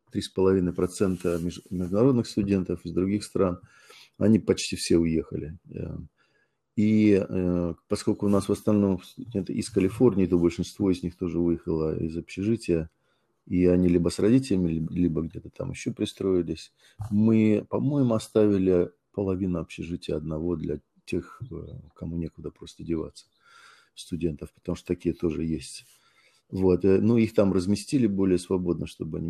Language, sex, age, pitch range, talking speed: Russian, male, 40-59, 85-105 Hz, 130 wpm